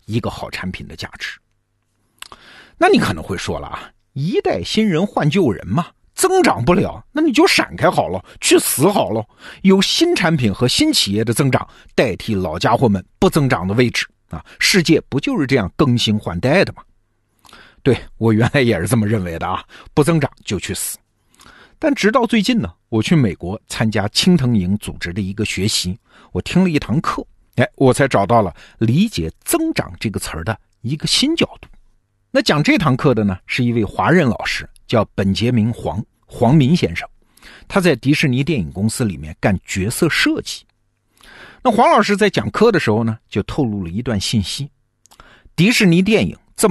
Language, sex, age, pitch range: Chinese, male, 50-69, 100-165 Hz